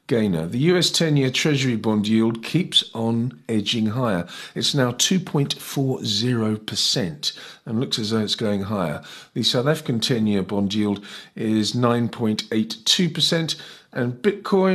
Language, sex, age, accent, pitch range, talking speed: English, male, 50-69, British, 105-145 Hz, 120 wpm